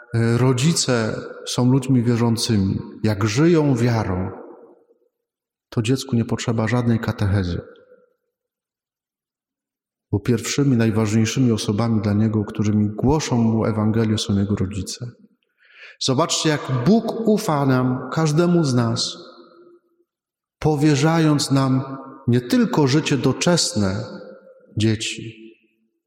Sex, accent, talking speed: male, native, 95 wpm